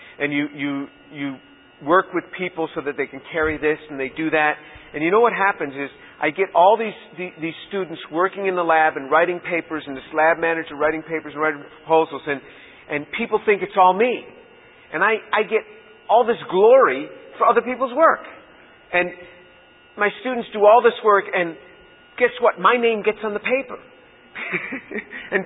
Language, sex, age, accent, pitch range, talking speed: English, male, 50-69, American, 160-230 Hz, 190 wpm